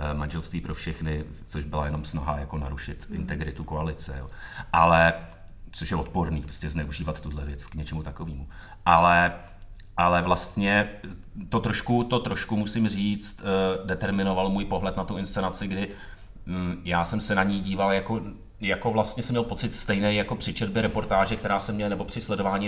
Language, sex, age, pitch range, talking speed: Czech, male, 30-49, 85-105 Hz, 160 wpm